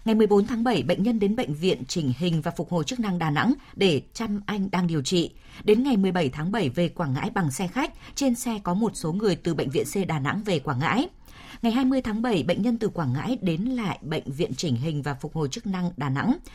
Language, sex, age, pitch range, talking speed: Vietnamese, female, 20-39, 175-235 Hz, 260 wpm